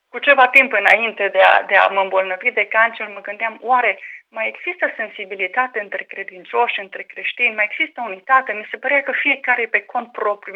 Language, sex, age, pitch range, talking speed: Romanian, female, 30-49, 220-275 Hz, 190 wpm